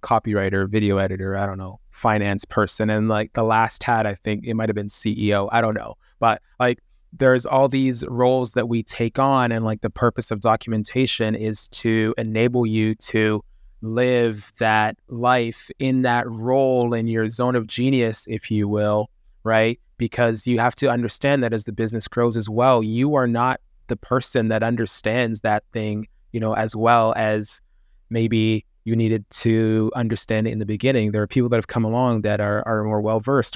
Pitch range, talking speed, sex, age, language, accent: 105-120 Hz, 190 wpm, male, 20-39, English, American